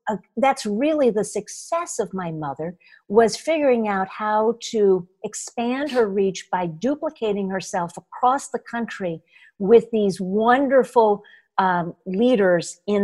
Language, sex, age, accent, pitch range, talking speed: English, female, 50-69, American, 190-240 Hz, 125 wpm